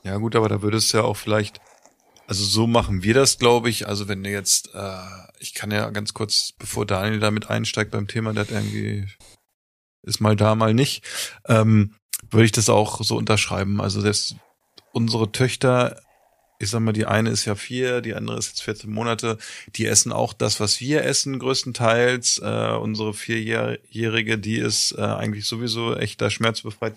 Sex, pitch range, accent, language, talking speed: male, 105-115 Hz, German, German, 180 wpm